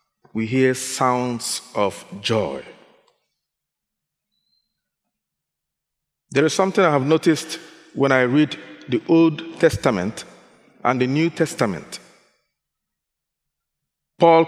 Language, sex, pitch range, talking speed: English, male, 125-175 Hz, 90 wpm